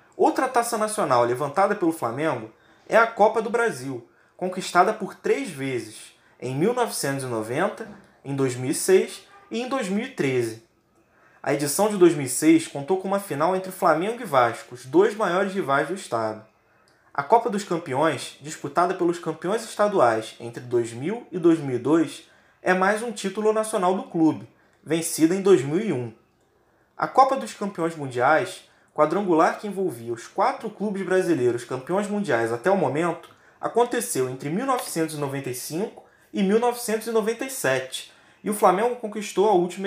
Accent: Brazilian